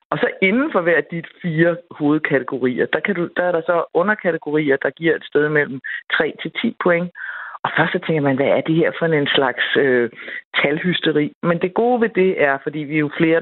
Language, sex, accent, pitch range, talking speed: Danish, female, native, 150-180 Hz, 215 wpm